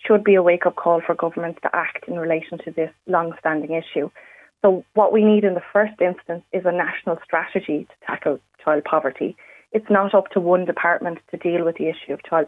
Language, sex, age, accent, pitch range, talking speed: English, female, 20-39, Irish, 165-185 Hz, 210 wpm